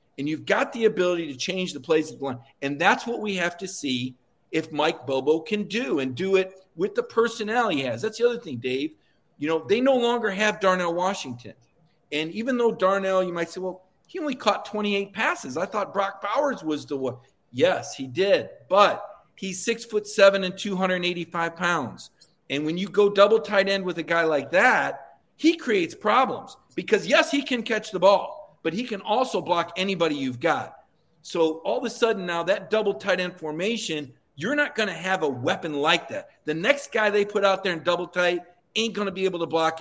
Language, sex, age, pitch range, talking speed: English, male, 50-69, 160-210 Hz, 220 wpm